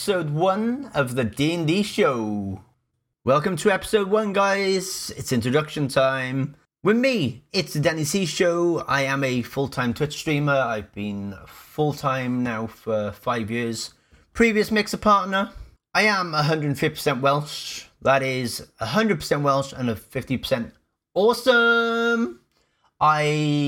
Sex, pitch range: male, 115-155 Hz